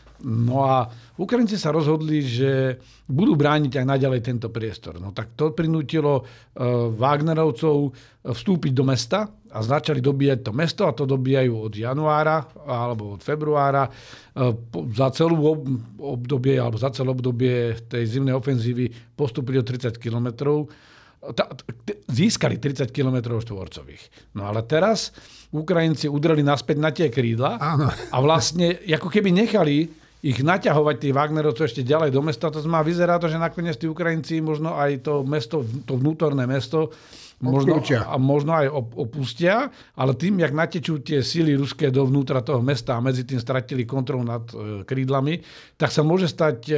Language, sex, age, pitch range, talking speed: Slovak, male, 50-69, 125-155 Hz, 150 wpm